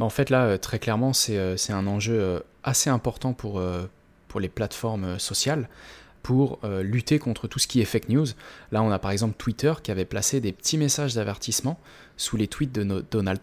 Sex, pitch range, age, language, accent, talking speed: male, 100-120 Hz, 20-39, French, French, 190 wpm